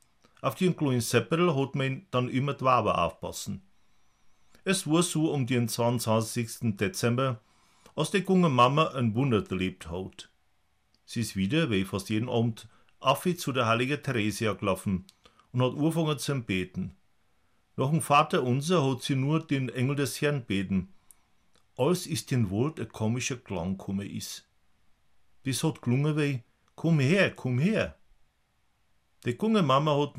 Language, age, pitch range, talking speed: Czech, 50-69, 105-140 Hz, 150 wpm